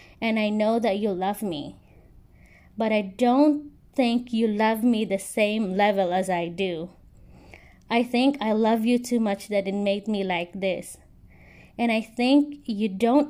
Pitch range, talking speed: 210-260 Hz, 170 wpm